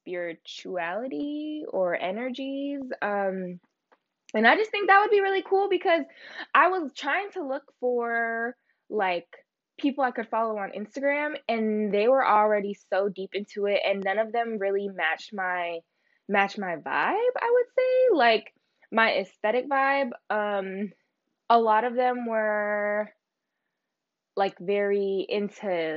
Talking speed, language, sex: 140 wpm, English, female